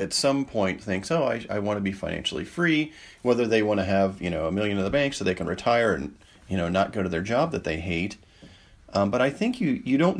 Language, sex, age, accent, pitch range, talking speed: English, male, 40-59, American, 95-115 Hz, 270 wpm